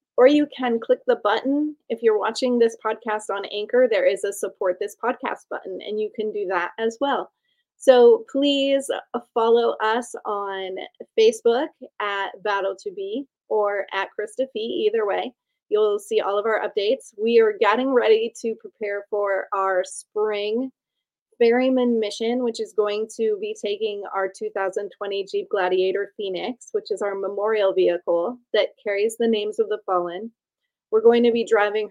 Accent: American